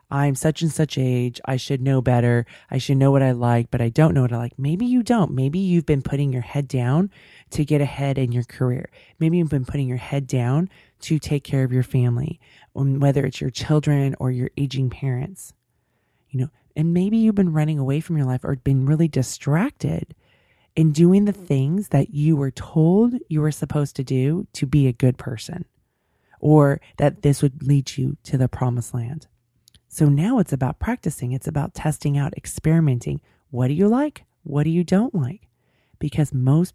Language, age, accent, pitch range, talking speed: English, 20-39, American, 130-160 Hz, 200 wpm